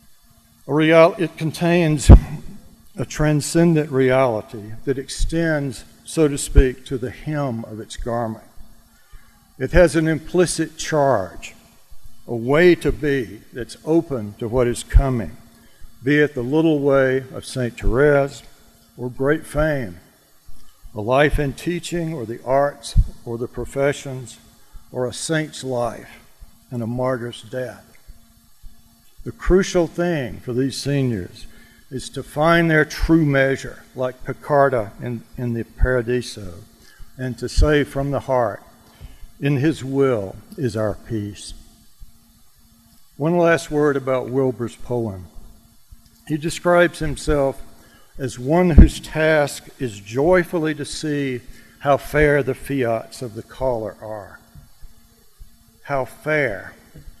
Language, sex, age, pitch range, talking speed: English, male, 60-79, 115-150 Hz, 125 wpm